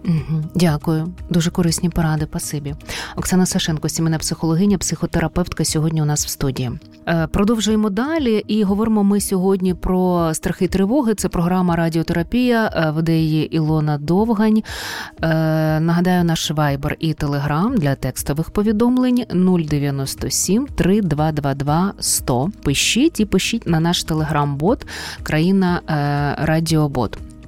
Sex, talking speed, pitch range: female, 105 wpm, 155-200 Hz